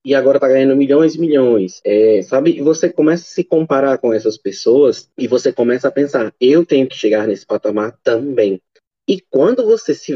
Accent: Brazilian